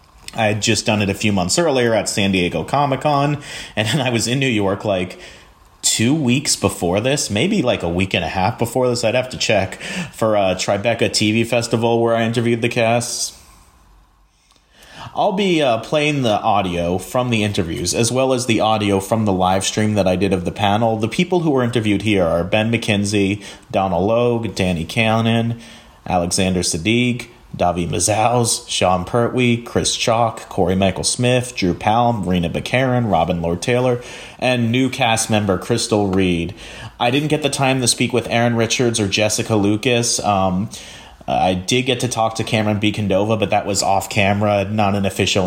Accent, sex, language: American, male, English